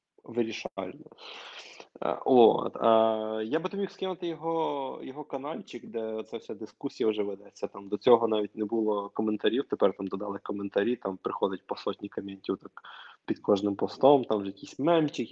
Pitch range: 105-140 Hz